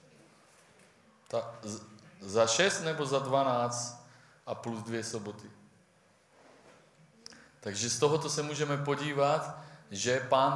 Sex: male